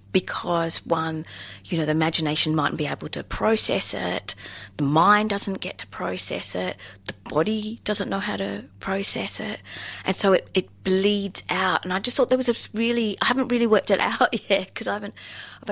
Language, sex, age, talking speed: English, female, 30-49, 200 wpm